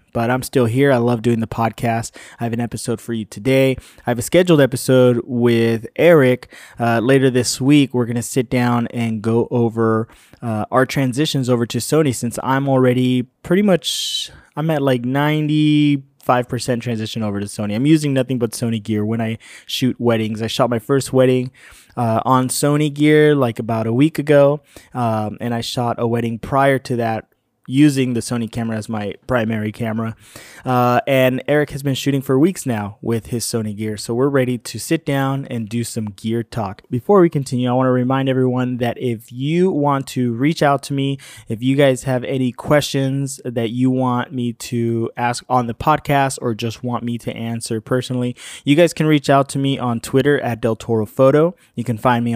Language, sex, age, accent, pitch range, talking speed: English, male, 20-39, American, 115-135 Hz, 200 wpm